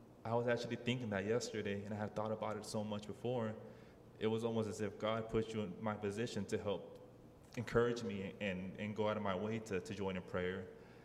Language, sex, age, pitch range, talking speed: English, male, 20-39, 100-115 Hz, 230 wpm